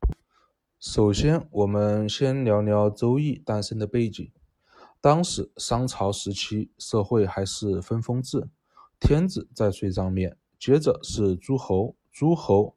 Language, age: Chinese, 20-39